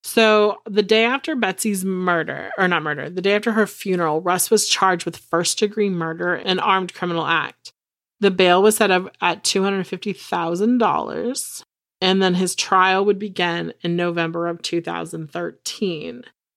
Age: 30-49